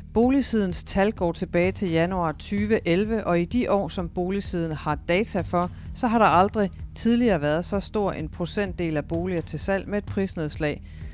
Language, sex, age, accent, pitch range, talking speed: Danish, female, 40-59, native, 155-195 Hz, 180 wpm